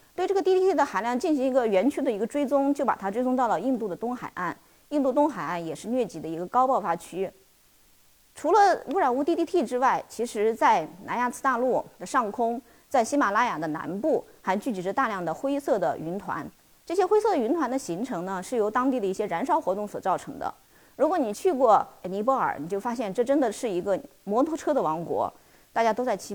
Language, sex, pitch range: Chinese, female, 205-285 Hz